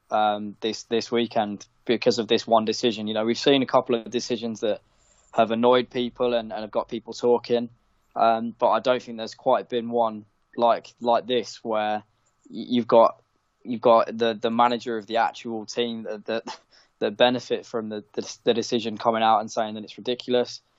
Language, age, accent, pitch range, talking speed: English, 10-29, British, 110-125 Hz, 190 wpm